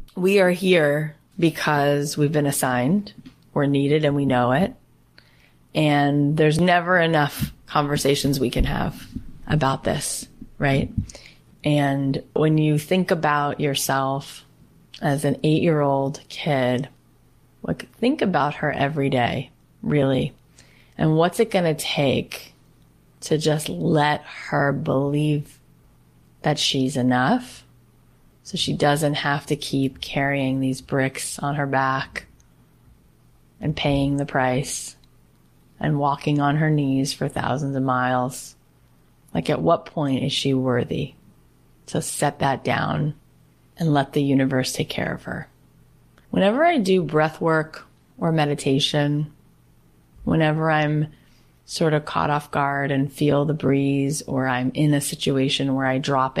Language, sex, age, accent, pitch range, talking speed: English, female, 30-49, American, 135-150 Hz, 135 wpm